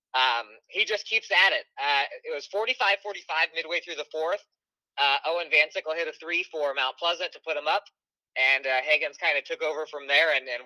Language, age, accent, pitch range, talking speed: English, 20-39, American, 135-200 Hz, 215 wpm